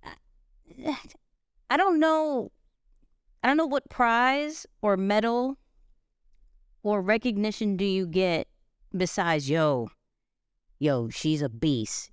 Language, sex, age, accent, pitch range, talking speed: English, female, 30-49, American, 160-220 Hz, 105 wpm